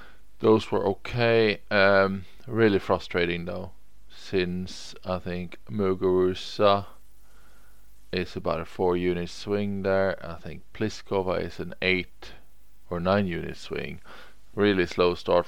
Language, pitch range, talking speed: English, 85-100 Hz, 120 wpm